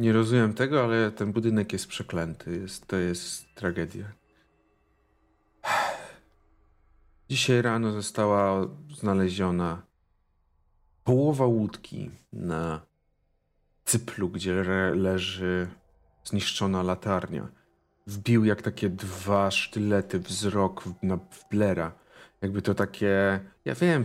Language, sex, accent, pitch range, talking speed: Polish, male, native, 90-115 Hz, 100 wpm